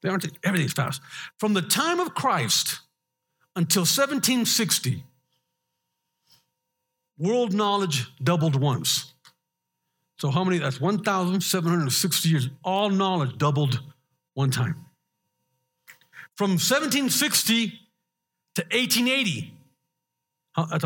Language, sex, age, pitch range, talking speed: English, male, 50-69, 140-195 Hz, 90 wpm